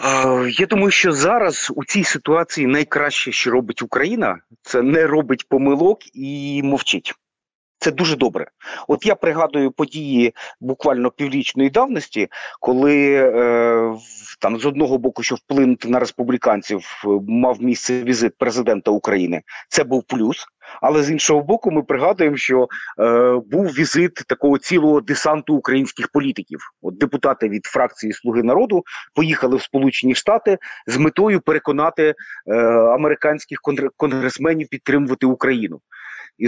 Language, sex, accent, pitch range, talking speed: Ukrainian, male, native, 125-150 Hz, 130 wpm